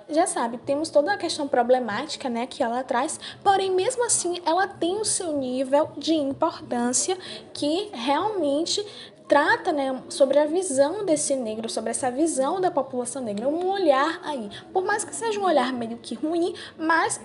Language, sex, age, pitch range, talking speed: Portuguese, female, 10-29, 235-320 Hz, 170 wpm